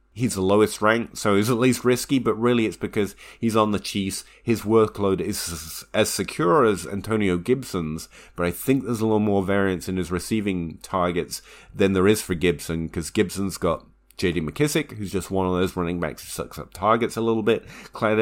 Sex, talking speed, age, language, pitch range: male, 205 wpm, 30-49, English, 90-115 Hz